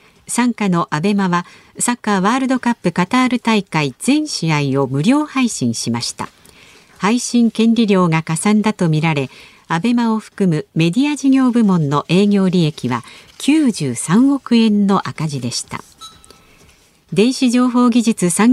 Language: Japanese